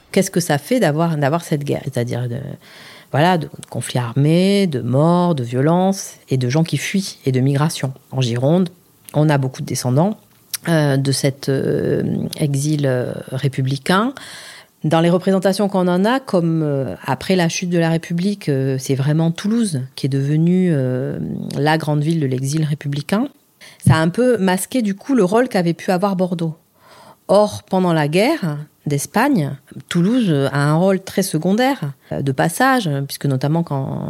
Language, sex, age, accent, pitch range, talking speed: French, female, 40-59, French, 140-185 Hz, 170 wpm